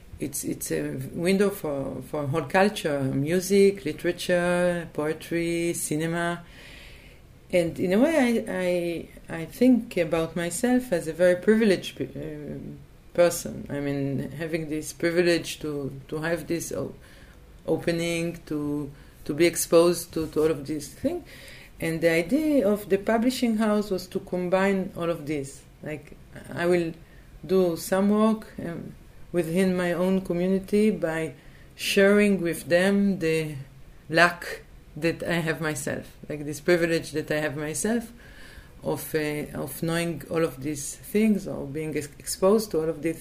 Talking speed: 145 wpm